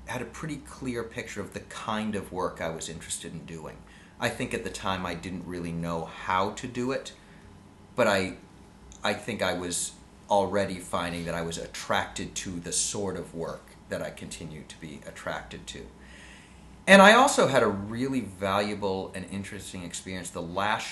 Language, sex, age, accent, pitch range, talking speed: English, male, 30-49, American, 90-115 Hz, 185 wpm